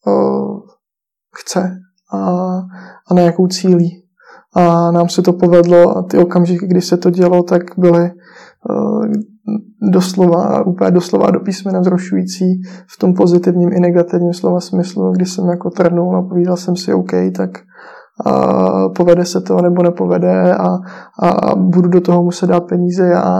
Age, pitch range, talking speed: 20-39, 170-180 Hz, 150 wpm